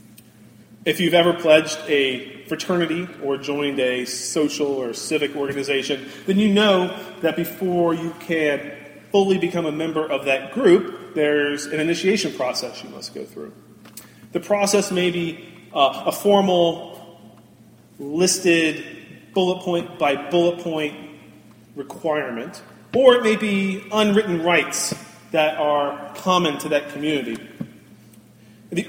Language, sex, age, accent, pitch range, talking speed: English, male, 30-49, American, 145-185 Hz, 130 wpm